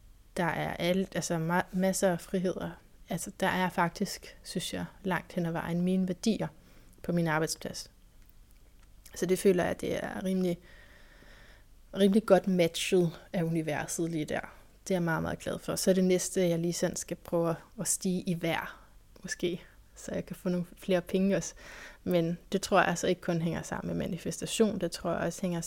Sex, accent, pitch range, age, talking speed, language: female, native, 165-190 Hz, 20-39, 190 wpm, Danish